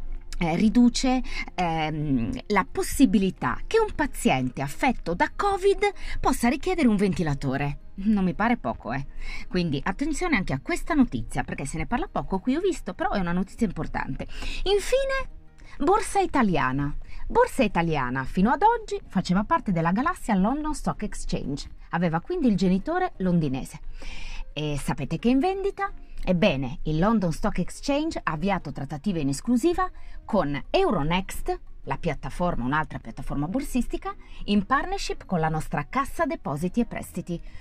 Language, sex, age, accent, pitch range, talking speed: Italian, female, 30-49, native, 160-265 Hz, 145 wpm